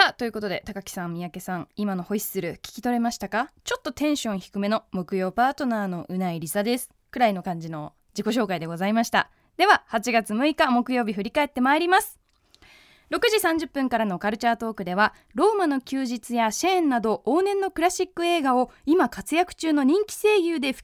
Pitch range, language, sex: 205-290 Hz, Japanese, female